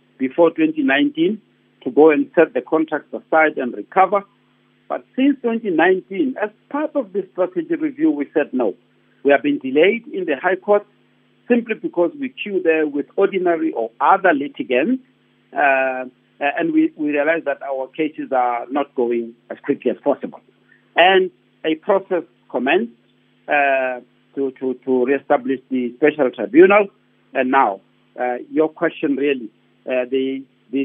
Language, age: English, 60-79